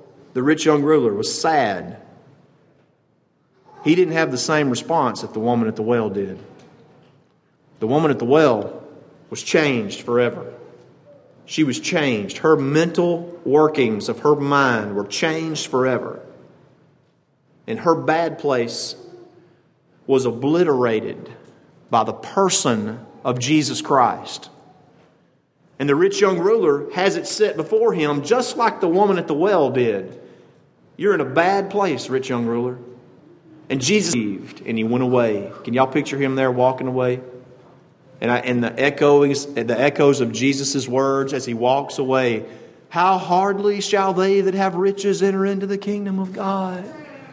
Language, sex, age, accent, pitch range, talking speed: English, male, 40-59, American, 120-165 Hz, 150 wpm